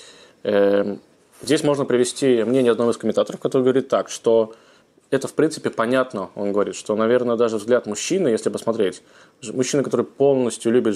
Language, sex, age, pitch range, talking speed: Russian, male, 20-39, 105-135 Hz, 155 wpm